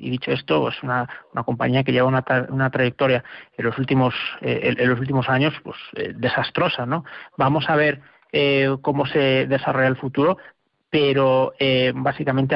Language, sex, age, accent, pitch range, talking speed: Spanish, male, 40-59, Spanish, 130-155 Hz, 180 wpm